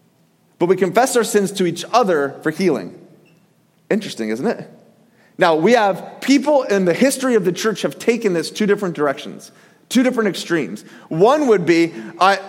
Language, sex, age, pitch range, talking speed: English, male, 30-49, 195-255 Hz, 175 wpm